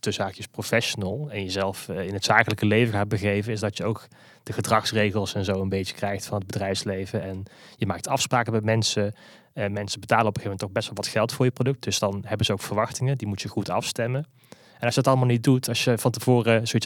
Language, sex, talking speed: Dutch, male, 245 wpm